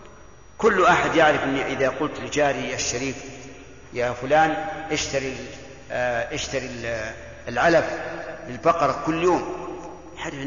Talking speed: 95 wpm